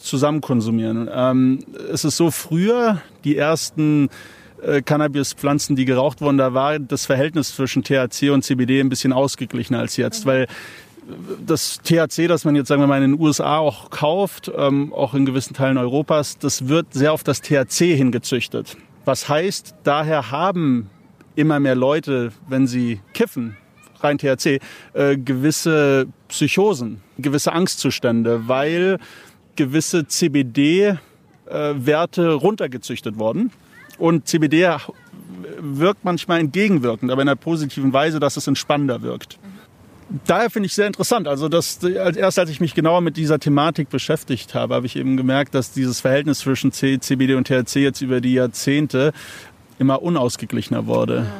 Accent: German